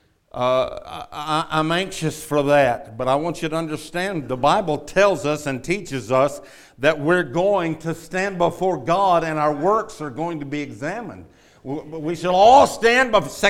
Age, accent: 60-79, American